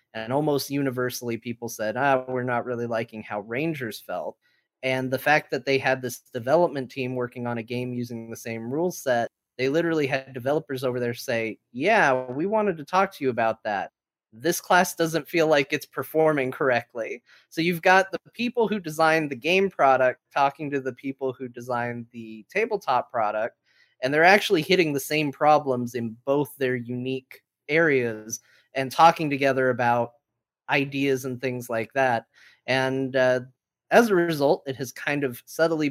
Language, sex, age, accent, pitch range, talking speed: English, male, 30-49, American, 120-150 Hz, 175 wpm